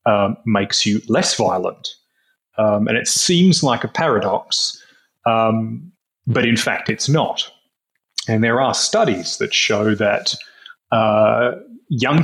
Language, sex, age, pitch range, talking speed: English, male, 30-49, 105-125 Hz, 130 wpm